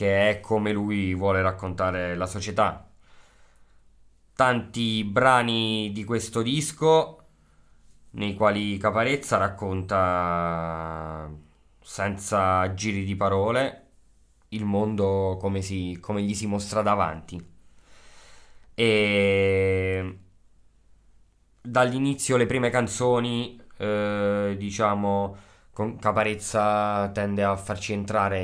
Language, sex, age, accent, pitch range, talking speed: Italian, male, 20-39, native, 95-110 Hz, 90 wpm